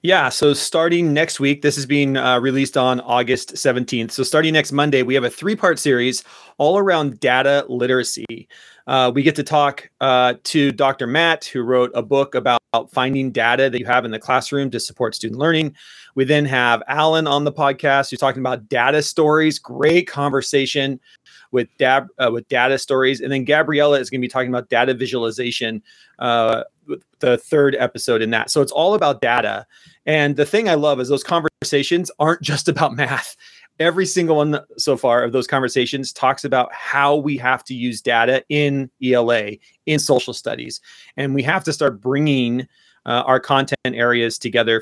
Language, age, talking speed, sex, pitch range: English, 30-49, 185 wpm, male, 125-150 Hz